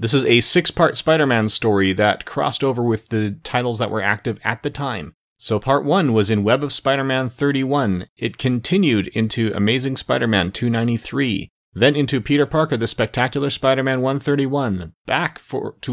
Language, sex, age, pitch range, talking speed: English, male, 30-49, 110-140 Hz, 160 wpm